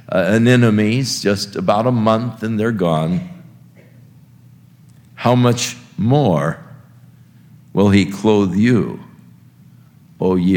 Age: 60-79